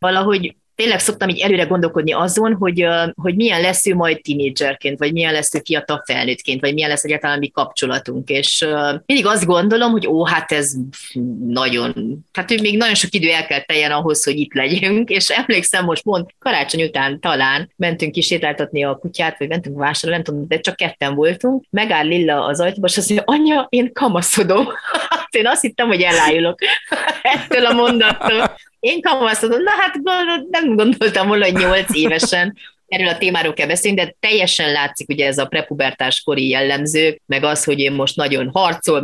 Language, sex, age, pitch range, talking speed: Hungarian, female, 30-49, 145-200 Hz, 175 wpm